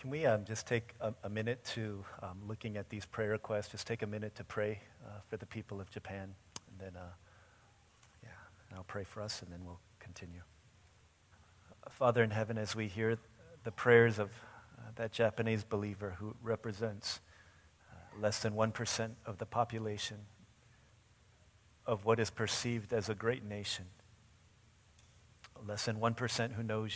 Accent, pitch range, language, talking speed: American, 100-115 Hz, English, 165 wpm